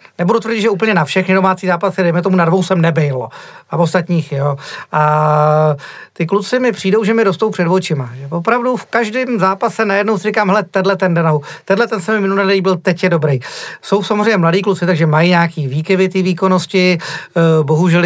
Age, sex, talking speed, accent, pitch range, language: 40-59, male, 195 wpm, native, 170-200 Hz, Czech